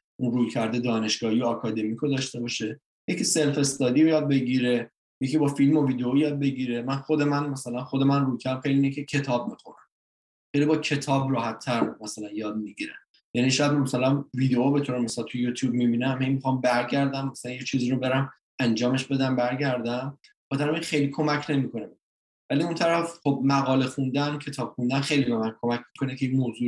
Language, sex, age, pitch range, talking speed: Persian, male, 20-39, 120-145 Hz, 175 wpm